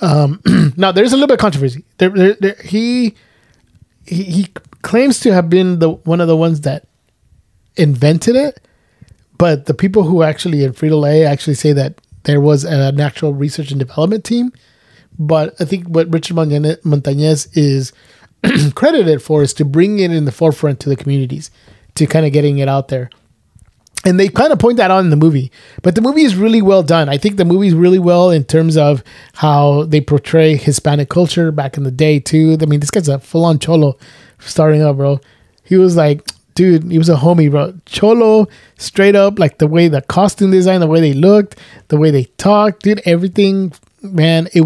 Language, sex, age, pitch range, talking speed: English, male, 20-39, 145-185 Hz, 200 wpm